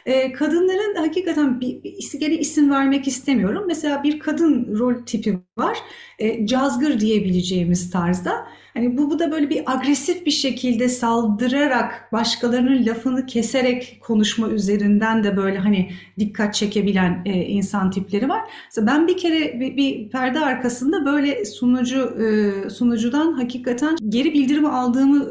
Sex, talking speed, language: female, 130 wpm, Turkish